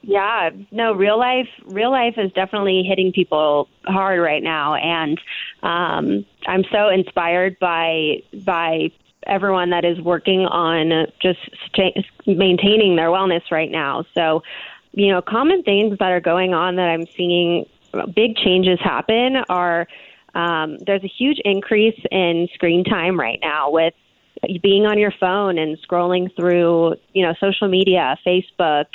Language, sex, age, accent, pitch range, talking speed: English, female, 20-39, American, 170-200 Hz, 145 wpm